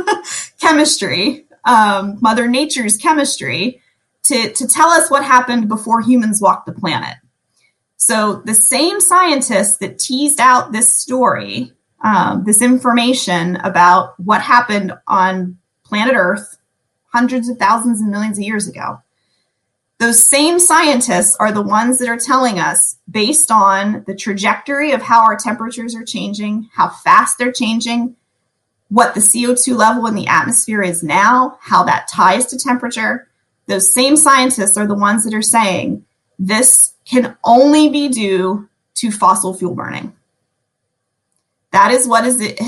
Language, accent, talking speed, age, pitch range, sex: English, American, 145 wpm, 20-39, 205-255 Hz, female